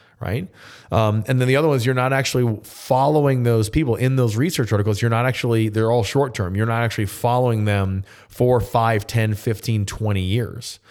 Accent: American